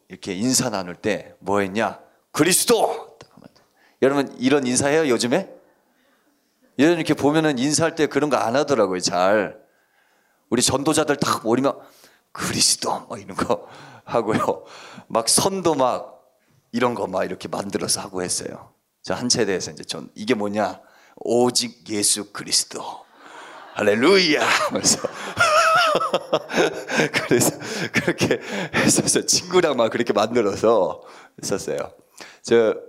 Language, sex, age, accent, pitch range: Korean, male, 40-59, native, 105-145 Hz